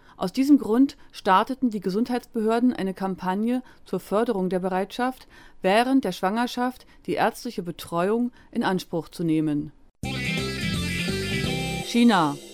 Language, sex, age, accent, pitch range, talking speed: German, female, 50-69, German, 185-240 Hz, 110 wpm